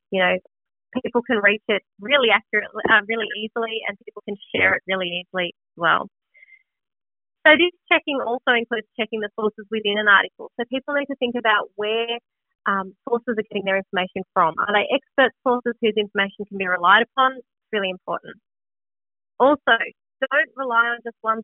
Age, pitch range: 30-49, 200-235 Hz